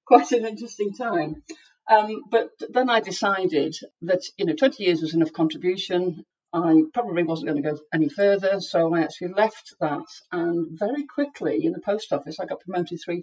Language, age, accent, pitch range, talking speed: English, 50-69, British, 165-215 Hz, 185 wpm